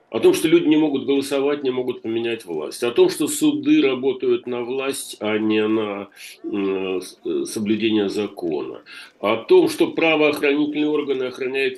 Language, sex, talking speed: Russian, male, 160 wpm